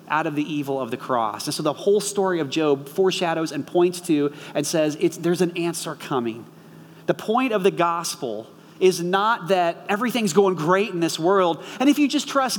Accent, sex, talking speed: American, male, 205 wpm